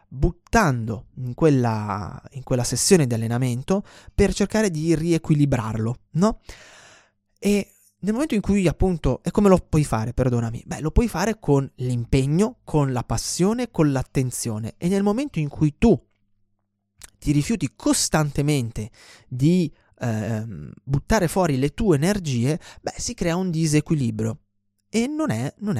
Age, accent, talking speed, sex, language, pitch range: 20-39, native, 140 wpm, male, Italian, 120-180 Hz